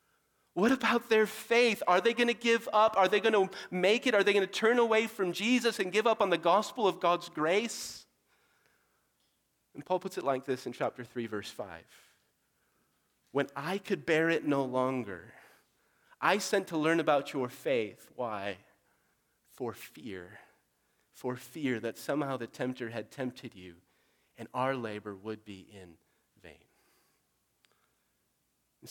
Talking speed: 160 wpm